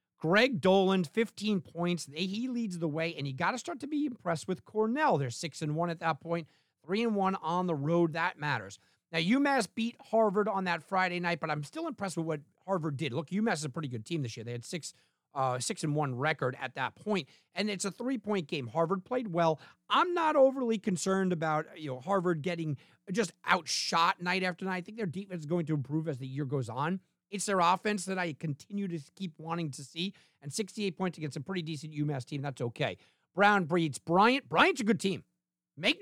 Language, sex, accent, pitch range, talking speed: English, male, American, 150-200 Hz, 225 wpm